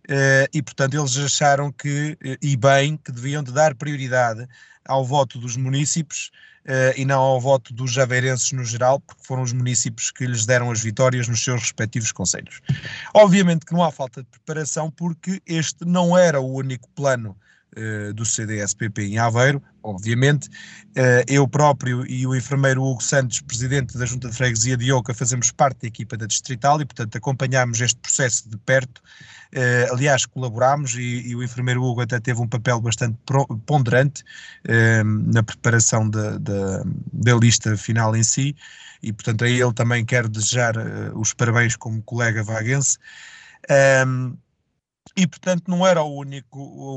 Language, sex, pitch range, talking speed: Portuguese, male, 120-140 Hz, 160 wpm